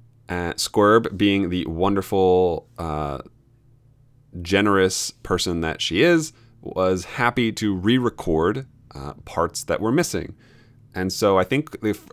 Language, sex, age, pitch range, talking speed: English, male, 30-49, 95-125 Hz, 120 wpm